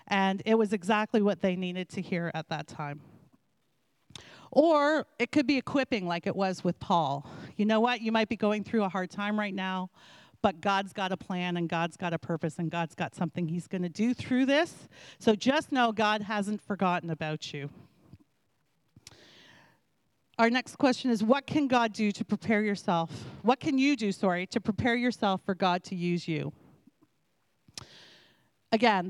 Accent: American